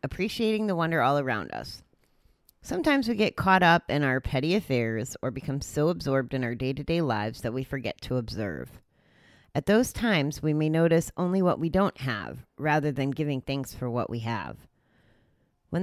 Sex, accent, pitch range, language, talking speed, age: female, American, 135-175 Hz, English, 190 wpm, 30-49